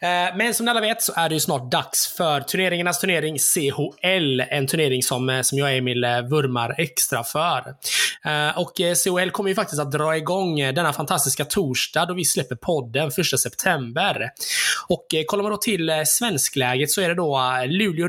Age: 20-39